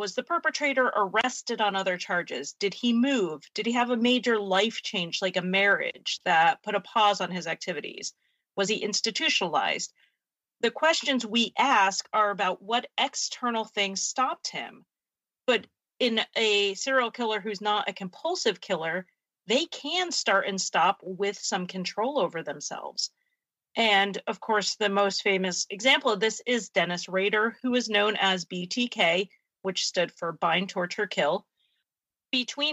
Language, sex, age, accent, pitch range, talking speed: English, female, 40-59, American, 190-240 Hz, 155 wpm